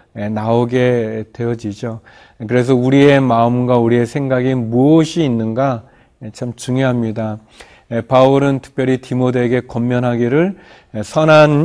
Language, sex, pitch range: Korean, male, 115-145 Hz